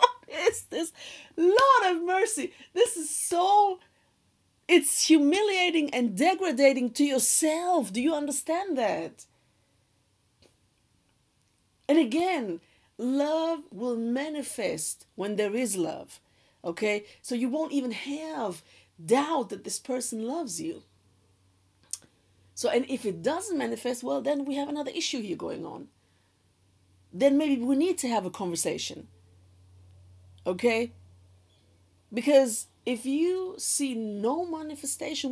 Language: English